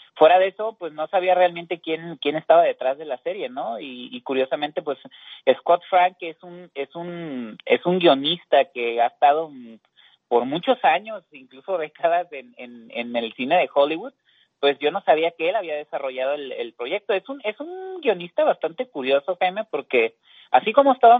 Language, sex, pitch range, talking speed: Spanish, male, 135-190 Hz, 190 wpm